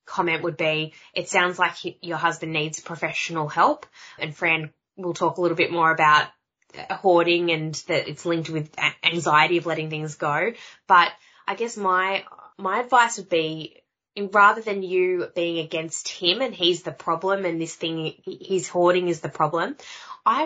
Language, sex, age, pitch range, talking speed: English, female, 20-39, 160-190 Hz, 170 wpm